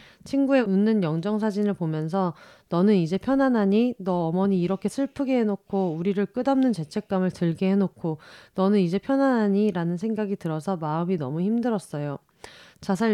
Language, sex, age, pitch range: Korean, female, 30-49, 175-225 Hz